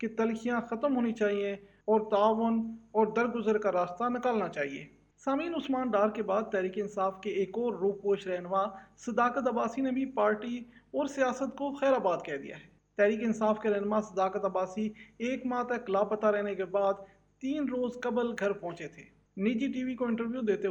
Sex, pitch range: male, 200-245 Hz